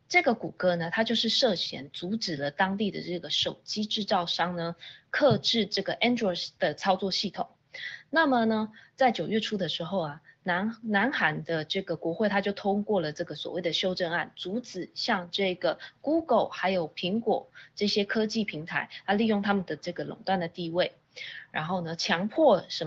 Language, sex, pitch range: Chinese, female, 175-225 Hz